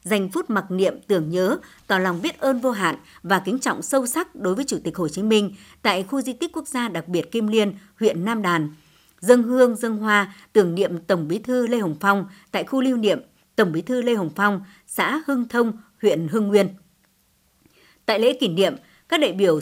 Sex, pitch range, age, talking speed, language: male, 180-235 Hz, 60-79, 220 wpm, Vietnamese